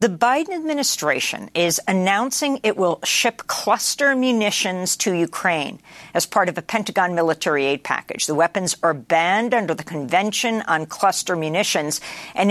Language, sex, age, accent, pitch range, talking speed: English, female, 50-69, American, 150-205 Hz, 150 wpm